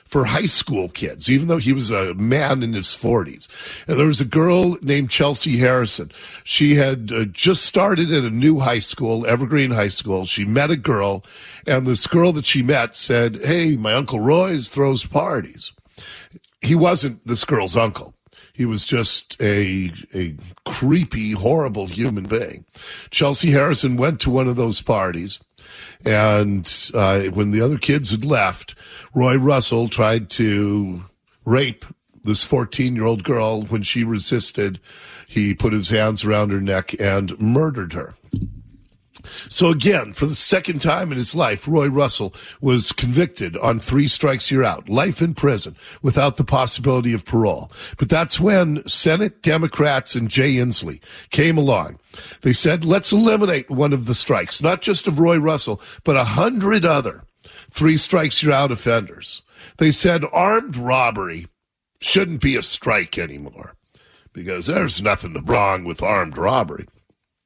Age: 50-69